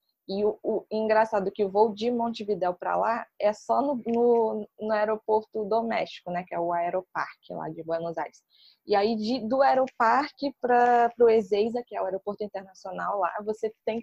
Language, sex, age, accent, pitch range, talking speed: Portuguese, female, 20-39, Brazilian, 185-225 Hz, 180 wpm